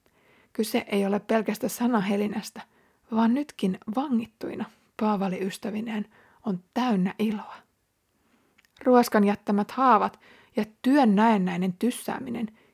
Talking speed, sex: 90 wpm, female